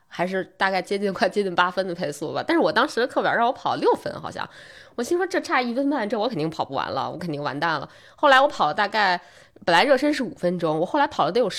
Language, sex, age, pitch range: Chinese, female, 20-39, 165-250 Hz